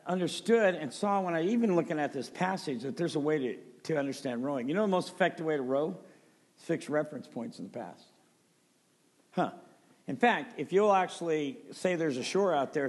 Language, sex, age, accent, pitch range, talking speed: English, male, 50-69, American, 145-185 Hz, 205 wpm